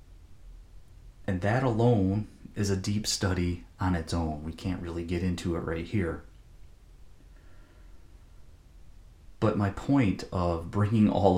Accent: American